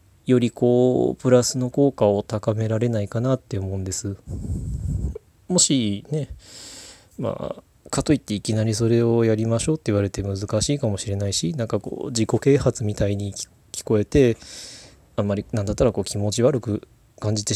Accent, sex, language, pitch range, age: native, male, Japanese, 100-115 Hz, 20-39